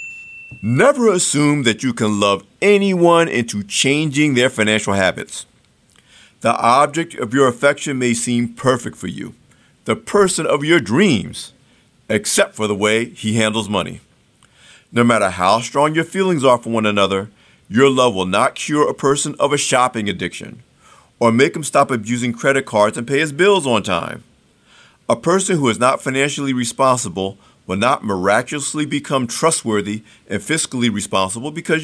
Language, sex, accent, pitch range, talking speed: English, male, American, 110-150 Hz, 160 wpm